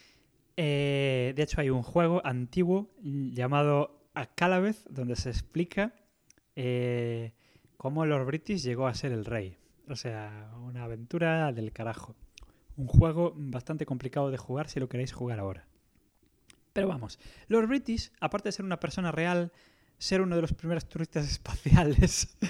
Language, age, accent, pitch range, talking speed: English, 20-39, Spanish, 130-175 Hz, 145 wpm